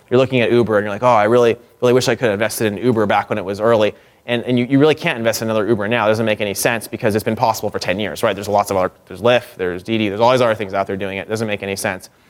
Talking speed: 335 wpm